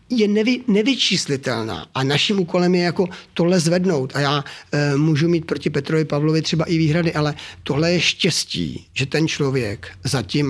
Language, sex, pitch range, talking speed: Czech, male, 140-170 Hz, 165 wpm